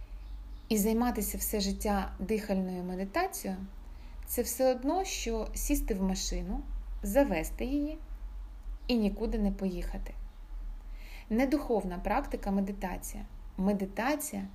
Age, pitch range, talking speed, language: 30-49, 185-240 Hz, 105 wpm, Ukrainian